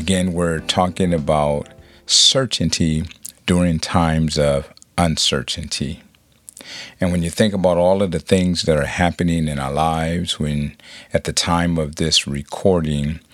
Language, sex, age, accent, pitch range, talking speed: English, male, 50-69, American, 75-85 Hz, 140 wpm